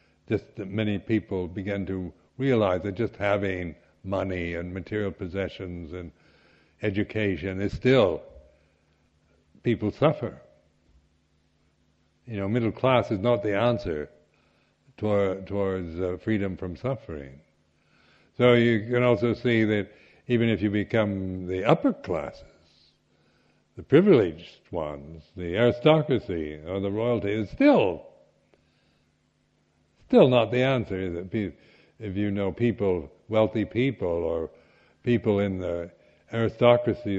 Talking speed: 120 wpm